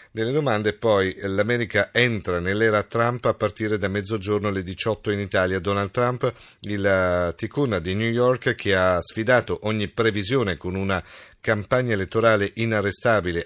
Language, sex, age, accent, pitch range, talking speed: Italian, male, 40-59, native, 95-110 Hz, 145 wpm